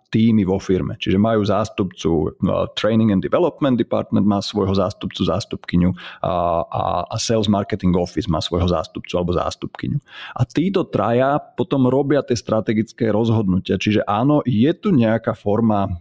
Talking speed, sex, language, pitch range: 150 wpm, male, Slovak, 100-130 Hz